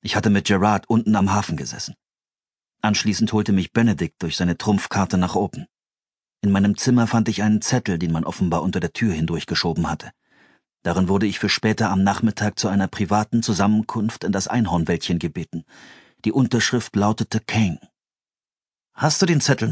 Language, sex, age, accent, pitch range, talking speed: German, male, 40-59, German, 100-120 Hz, 165 wpm